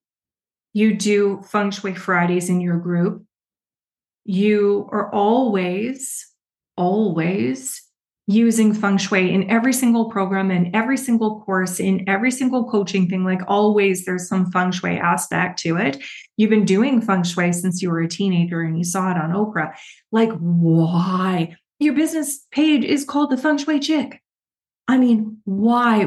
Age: 30-49